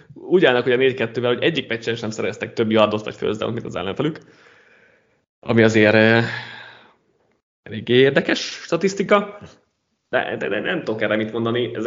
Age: 20-39